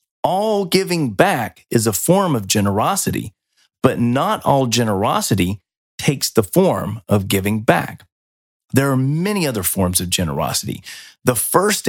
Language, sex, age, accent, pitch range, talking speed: English, male, 40-59, American, 110-175 Hz, 135 wpm